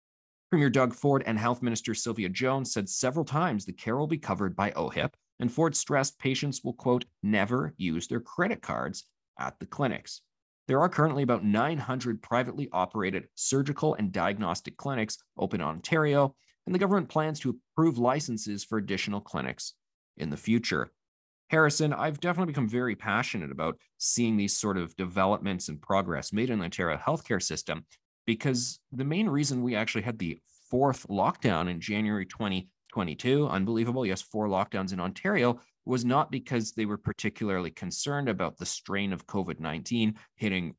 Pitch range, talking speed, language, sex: 105-140 Hz, 165 wpm, English, male